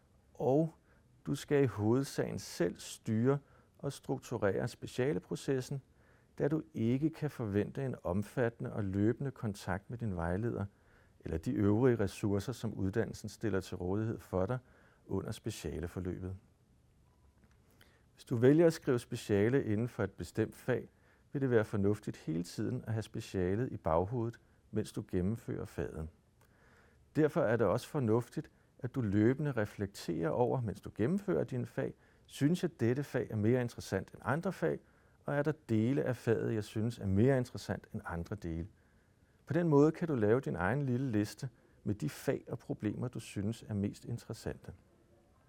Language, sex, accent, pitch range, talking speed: Danish, male, native, 100-130 Hz, 160 wpm